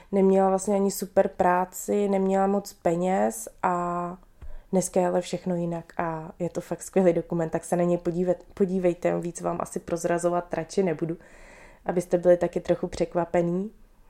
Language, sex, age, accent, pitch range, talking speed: Czech, female, 20-39, native, 170-205 Hz, 160 wpm